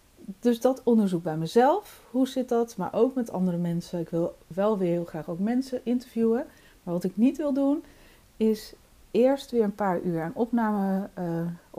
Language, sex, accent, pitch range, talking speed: Dutch, female, Dutch, 175-235 Hz, 185 wpm